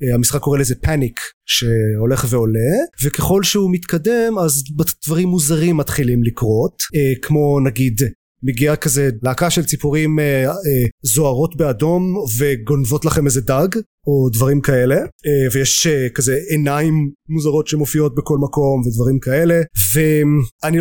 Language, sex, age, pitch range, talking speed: Hebrew, male, 30-49, 125-155 Hz, 125 wpm